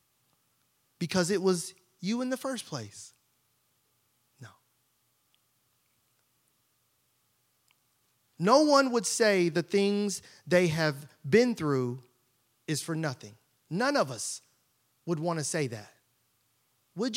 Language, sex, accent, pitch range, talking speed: English, male, American, 130-205 Hz, 110 wpm